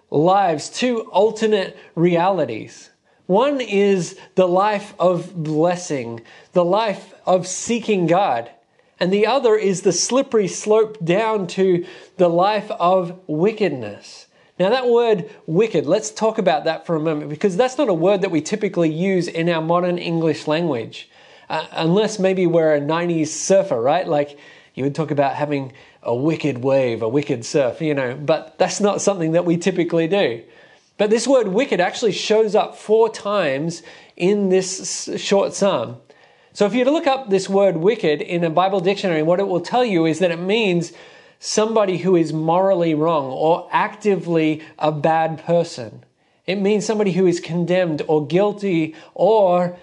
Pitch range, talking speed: 160-200 Hz, 165 wpm